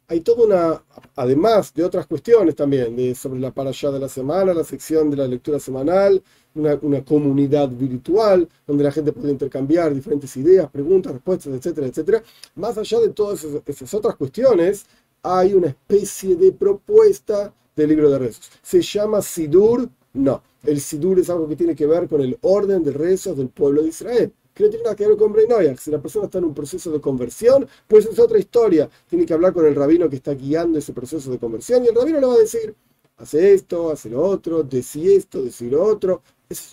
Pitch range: 140-230 Hz